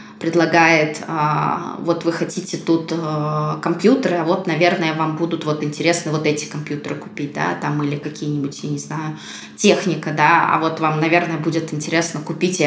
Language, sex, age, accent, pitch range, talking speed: Russian, female, 20-39, native, 155-170 Hz, 165 wpm